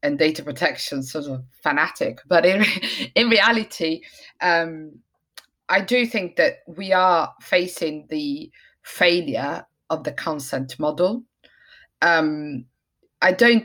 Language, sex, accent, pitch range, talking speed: English, female, British, 155-190 Hz, 120 wpm